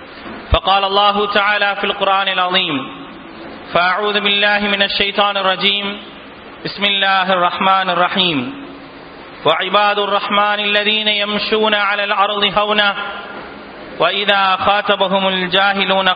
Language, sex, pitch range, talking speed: English, male, 190-205 Hz, 95 wpm